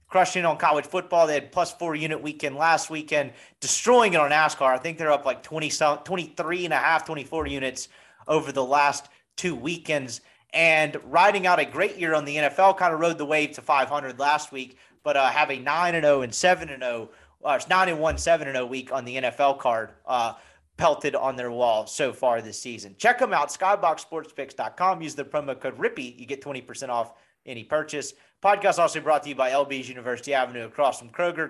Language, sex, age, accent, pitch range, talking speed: English, male, 30-49, American, 135-170 Hz, 200 wpm